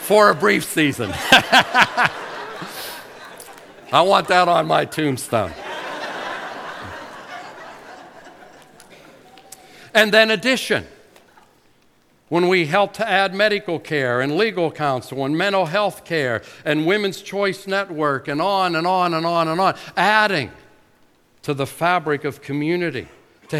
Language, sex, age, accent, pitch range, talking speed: English, male, 60-79, American, 140-190 Hz, 115 wpm